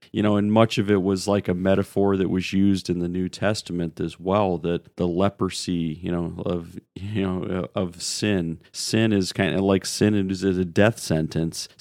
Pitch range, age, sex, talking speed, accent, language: 90-105 Hz, 40-59, male, 200 wpm, American, English